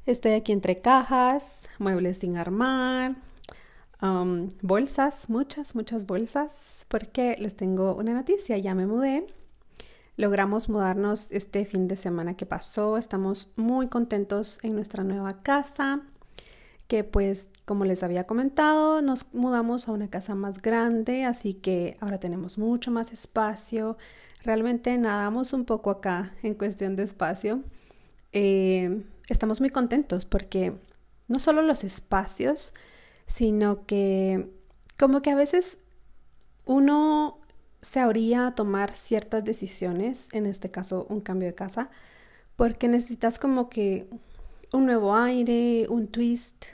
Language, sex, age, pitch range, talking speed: Spanish, female, 30-49, 195-250 Hz, 130 wpm